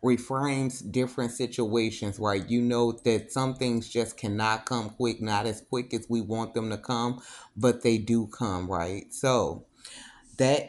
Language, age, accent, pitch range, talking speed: English, 30-49, American, 115-130 Hz, 165 wpm